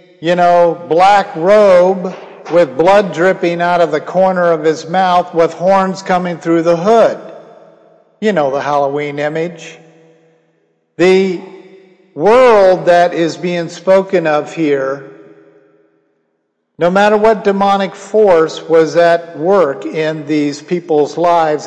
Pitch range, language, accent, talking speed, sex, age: 155-195 Hz, English, American, 125 wpm, male, 50-69